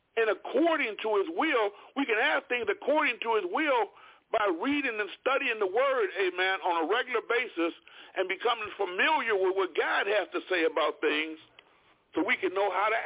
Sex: male